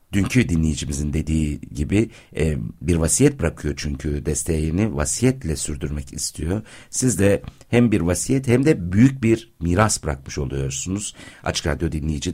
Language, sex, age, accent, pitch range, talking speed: Turkish, male, 60-79, native, 70-100 Hz, 130 wpm